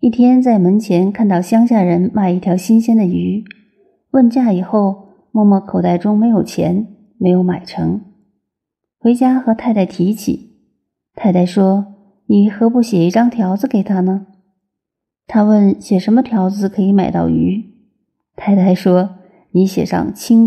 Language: Chinese